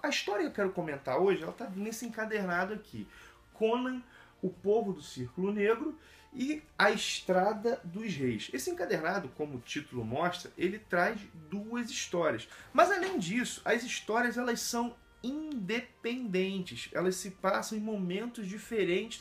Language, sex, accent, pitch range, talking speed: Portuguese, male, Brazilian, 175-235 Hz, 145 wpm